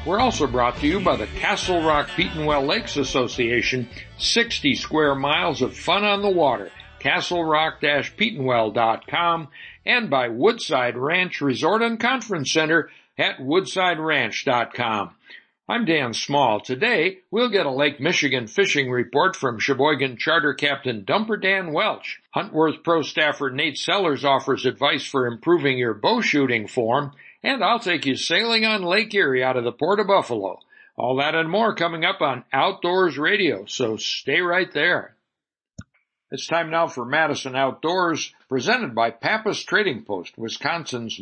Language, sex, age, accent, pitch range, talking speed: English, male, 60-79, American, 130-175 Hz, 150 wpm